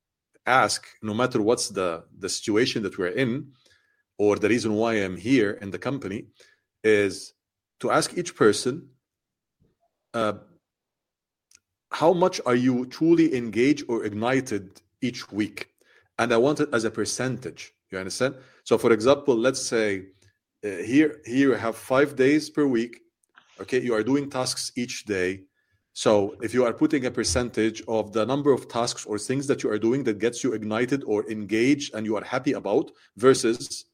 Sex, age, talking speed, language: male, 40-59, 170 wpm, English